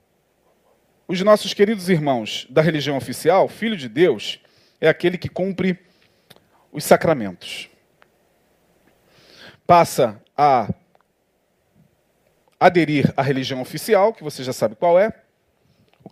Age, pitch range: 40-59, 145-195 Hz